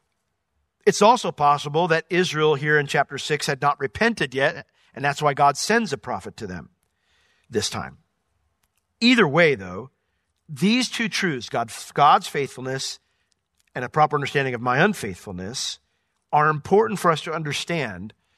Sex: male